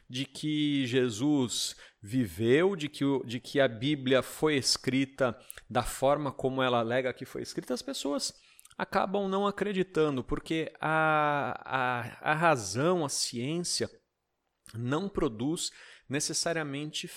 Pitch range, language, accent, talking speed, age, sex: 120-150 Hz, Portuguese, Brazilian, 120 wpm, 40-59, male